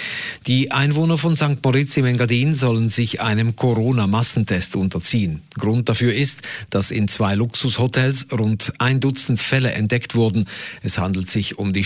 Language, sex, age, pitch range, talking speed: German, male, 50-69, 105-130 Hz, 150 wpm